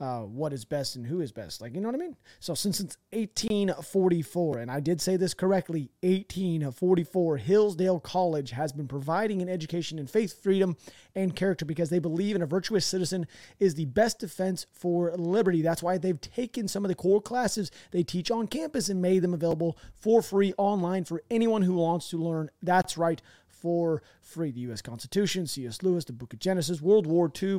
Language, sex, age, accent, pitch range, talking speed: English, male, 30-49, American, 170-205 Hz, 200 wpm